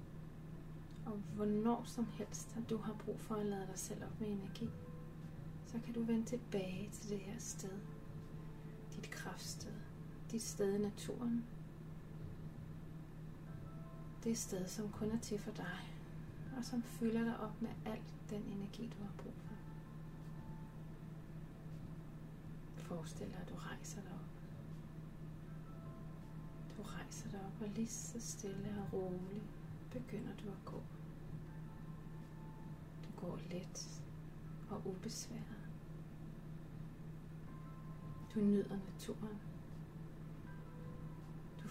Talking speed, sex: 115 wpm, female